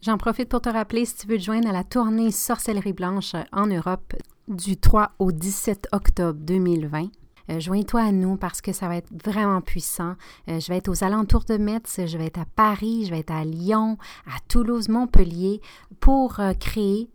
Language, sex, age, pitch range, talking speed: French, female, 30-49, 175-220 Hz, 200 wpm